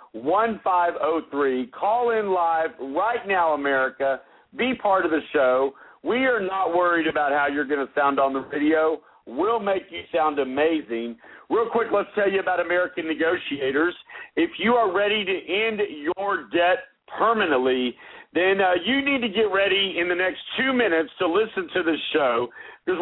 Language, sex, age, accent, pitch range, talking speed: English, male, 50-69, American, 160-215 Hz, 170 wpm